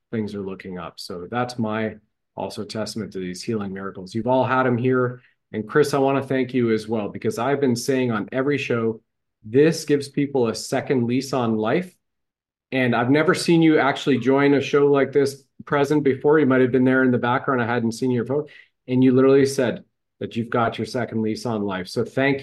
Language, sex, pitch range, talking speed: English, male, 110-135 Hz, 220 wpm